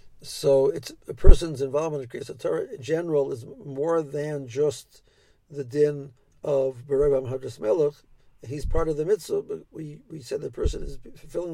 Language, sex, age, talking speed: English, male, 50-69, 165 wpm